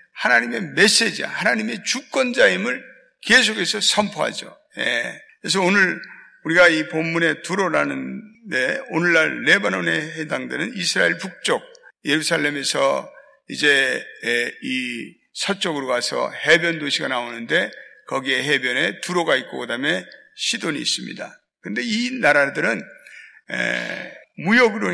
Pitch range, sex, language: 140-220 Hz, male, Korean